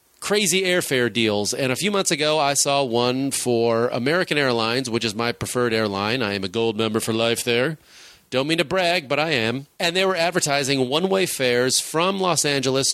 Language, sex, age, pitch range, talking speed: English, male, 30-49, 120-155 Hz, 200 wpm